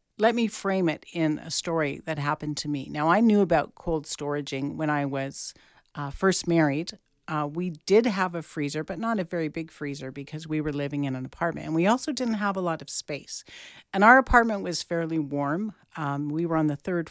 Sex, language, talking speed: female, English, 220 wpm